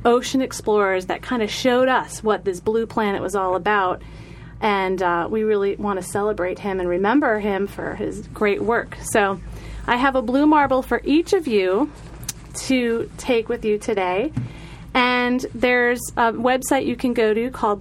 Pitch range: 200-245 Hz